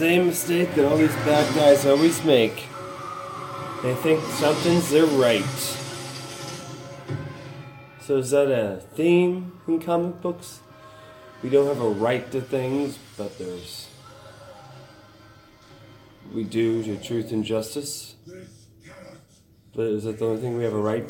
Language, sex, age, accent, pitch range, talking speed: English, male, 30-49, American, 110-145 Hz, 135 wpm